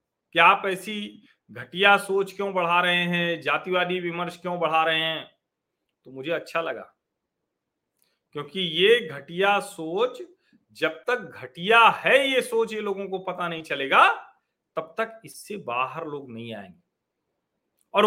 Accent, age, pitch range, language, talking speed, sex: native, 40-59, 155-215 Hz, Hindi, 145 wpm, male